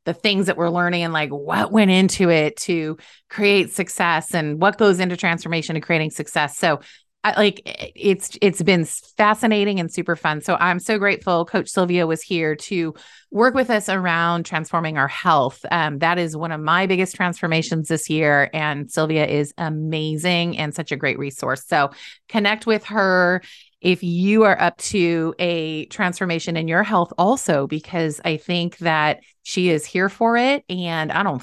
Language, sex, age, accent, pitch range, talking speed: English, female, 30-49, American, 160-205 Hz, 180 wpm